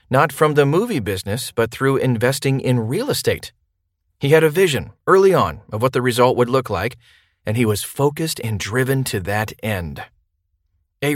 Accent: American